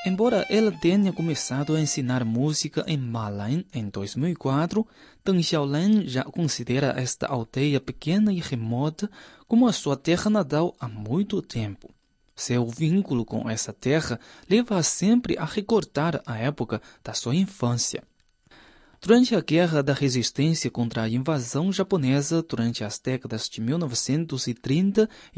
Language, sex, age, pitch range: Chinese, male, 20-39, 125-190 Hz